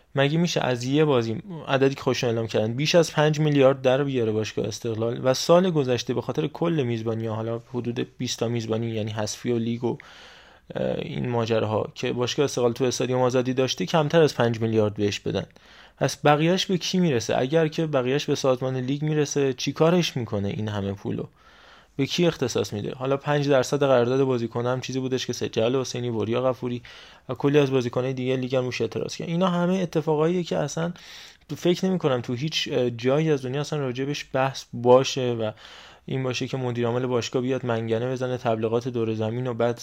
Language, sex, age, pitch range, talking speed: Persian, male, 20-39, 120-140 Hz, 195 wpm